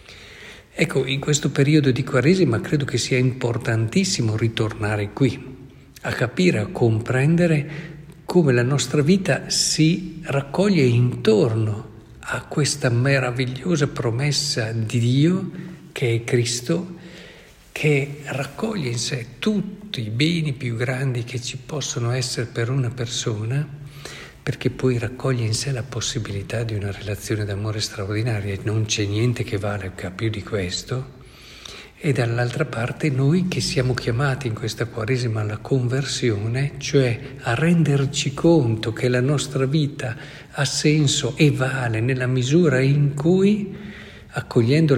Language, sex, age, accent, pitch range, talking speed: Italian, male, 50-69, native, 115-145 Hz, 130 wpm